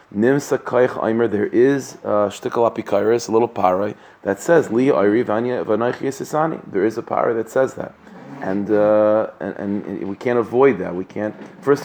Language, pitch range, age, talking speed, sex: English, 100-120 Hz, 30-49, 125 wpm, male